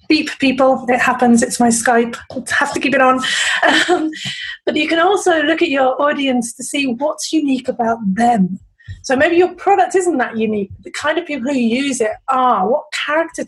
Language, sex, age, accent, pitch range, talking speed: English, female, 30-49, British, 230-275 Hz, 200 wpm